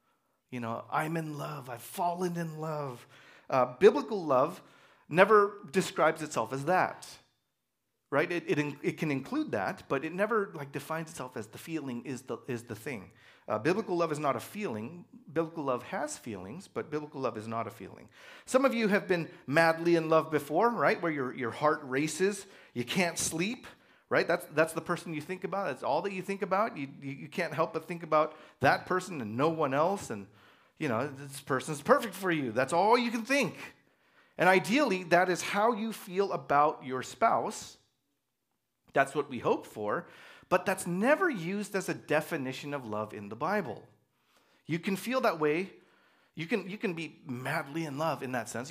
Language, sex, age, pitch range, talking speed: English, male, 40-59, 140-195 Hz, 195 wpm